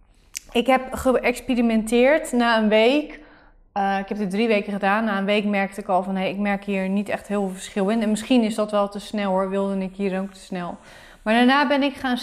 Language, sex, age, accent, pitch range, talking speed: Dutch, female, 20-39, Dutch, 200-250 Hz, 235 wpm